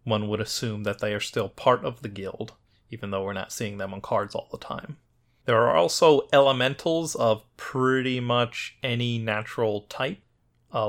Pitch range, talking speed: 105-120 Hz, 180 wpm